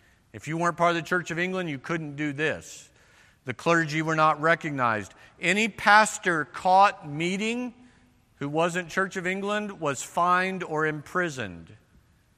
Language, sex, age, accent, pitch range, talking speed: English, male, 50-69, American, 135-185 Hz, 150 wpm